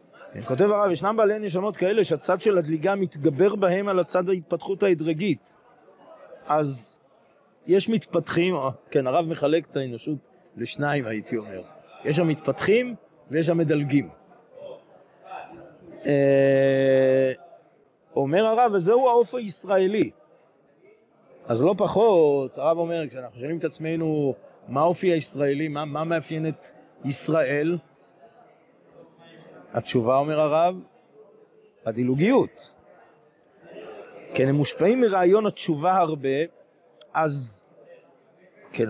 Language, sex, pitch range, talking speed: Hebrew, male, 145-185 Hz, 100 wpm